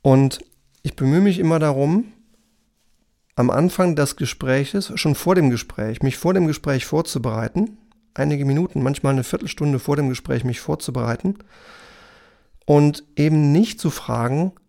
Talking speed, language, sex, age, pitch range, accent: 140 wpm, German, male, 40-59, 130-165 Hz, German